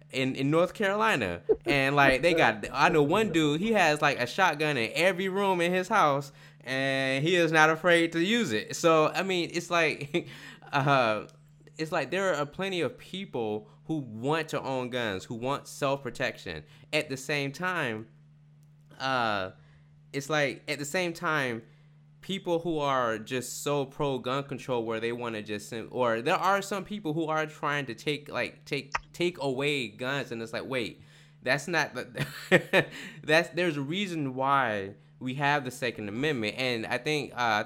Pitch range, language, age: 130-160 Hz, English, 20-39